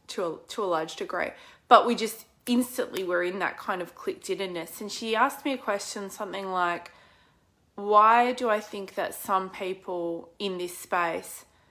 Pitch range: 170-210 Hz